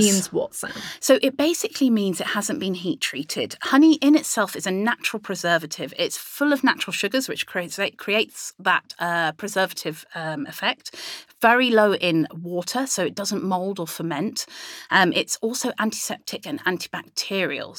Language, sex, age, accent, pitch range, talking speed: English, female, 30-49, British, 170-220 Hz, 155 wpm